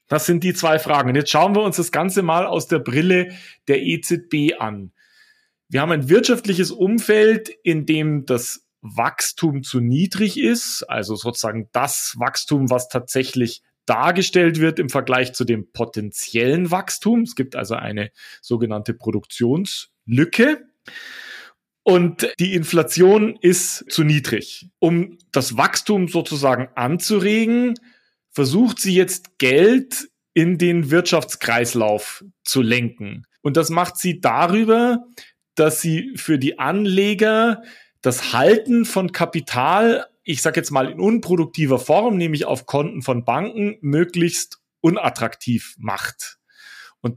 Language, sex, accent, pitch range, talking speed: German, male, German, 130-190 Hz, 130 wpm